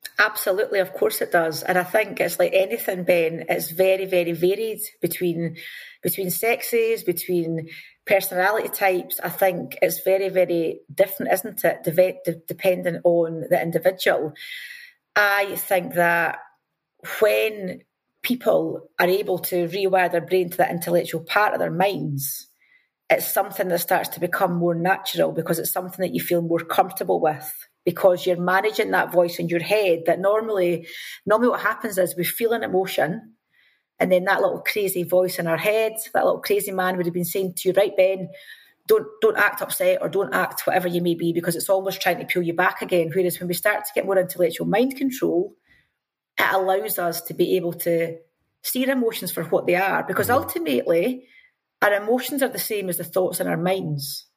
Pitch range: 175-210 Hz